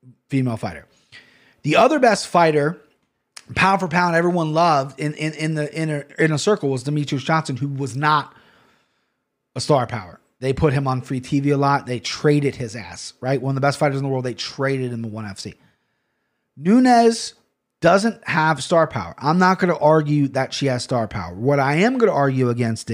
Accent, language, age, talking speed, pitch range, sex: American, English, 30-49, 205 wpm, 130-165 Hz, male